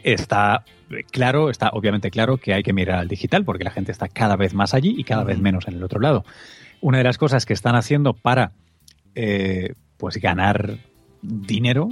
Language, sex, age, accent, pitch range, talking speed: Spanish, male, 30-49, Spanish, 100-125 Hz, 195 wpm